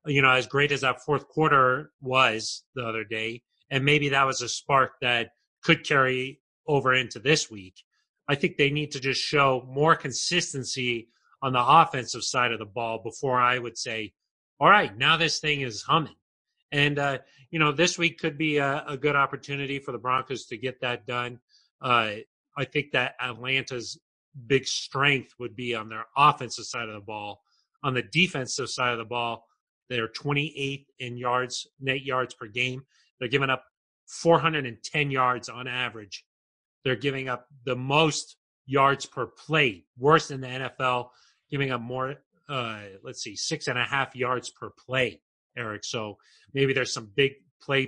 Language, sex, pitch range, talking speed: English, male, 120-145 Hz, 175 wpm